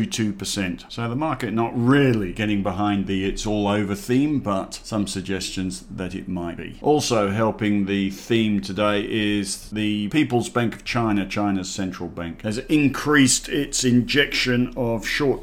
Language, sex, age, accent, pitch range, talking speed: English, male, 50-69, British, 100-120 Hz, 150 wpm